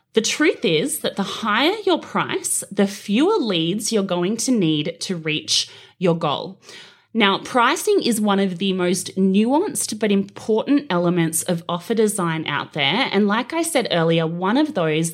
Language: English